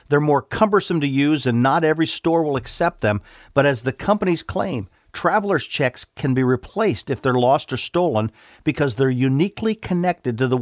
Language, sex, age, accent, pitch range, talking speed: English, male, 50-69, American, 125-165 Hz, 185 wpm